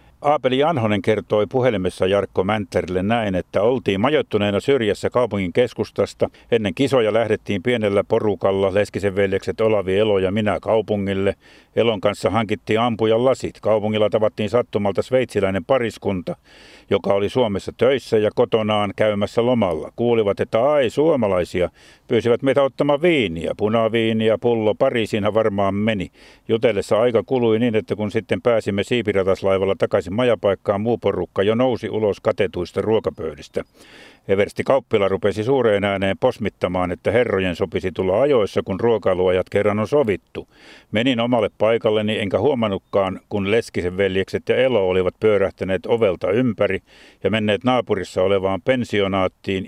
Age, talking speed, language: 50-69, 130 wpm, Finnish